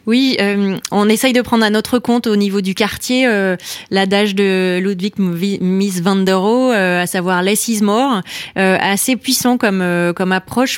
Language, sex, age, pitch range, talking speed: French, female, 20-39, 170-205 Hz, 190 wpm